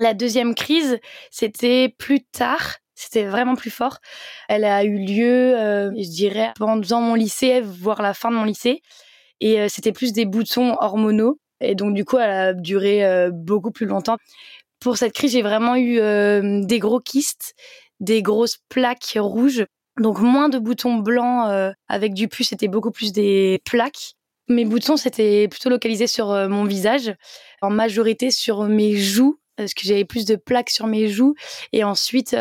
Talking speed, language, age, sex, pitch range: 180 wpm, French, 20-39, female, 205-245 Hz